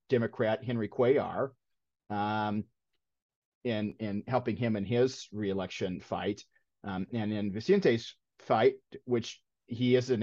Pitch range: 100-125 Hz